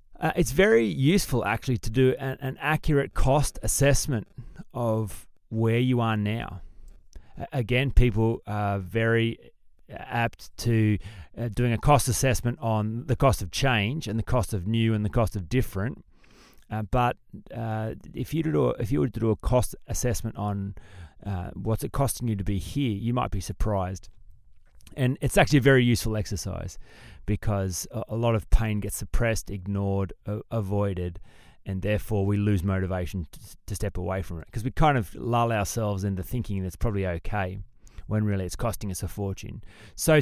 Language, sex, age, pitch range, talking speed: English, male, 30-49, 100-125 Hz, 180 wpm